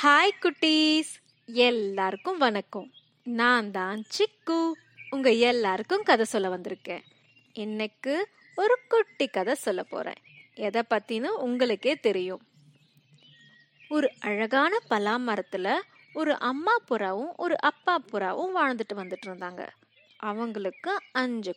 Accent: native